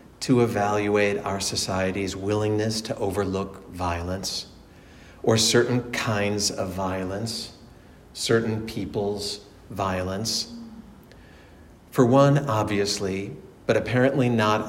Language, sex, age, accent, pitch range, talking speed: English, male, 50-69, American, 95-120 Hz, 90 wpm